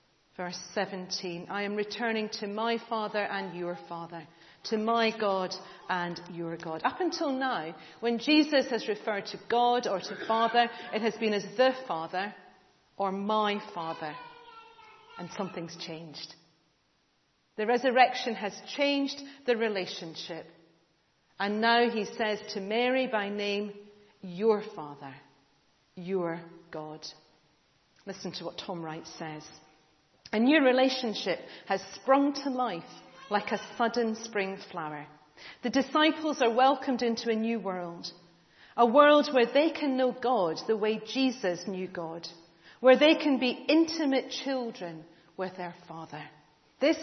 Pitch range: 175-250 Hz